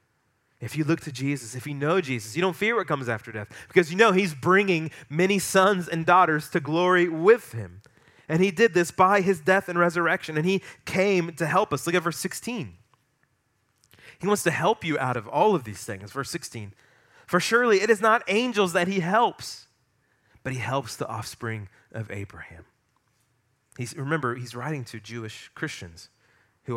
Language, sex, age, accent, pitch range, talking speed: English, male, 30-49, American, 120-185 Hz, 190 wpm